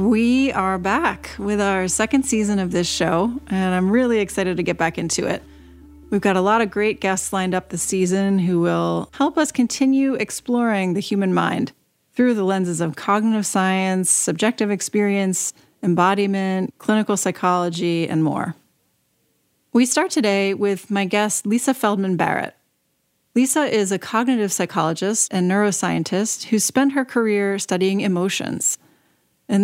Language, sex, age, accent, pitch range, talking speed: English, female, 30-49, American, 180-225 Hz, 150 wpm